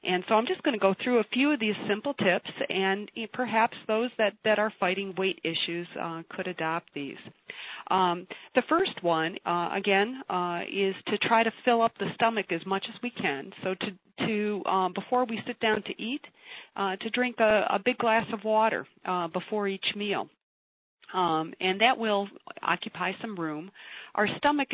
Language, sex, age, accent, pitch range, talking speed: English, female, 50-69, American, 170-220 Hz, 190 wpm